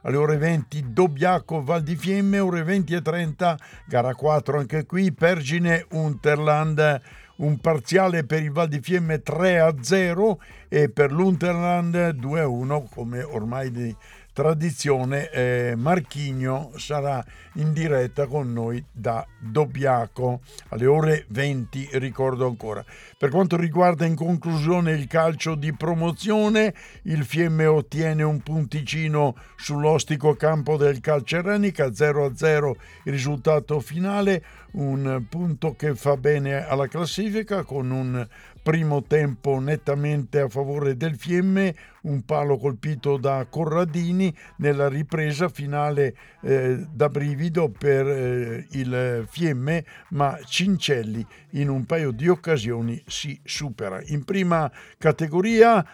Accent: native